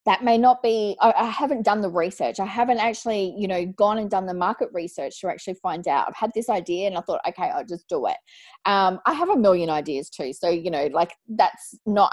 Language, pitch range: English, 185-225 Hz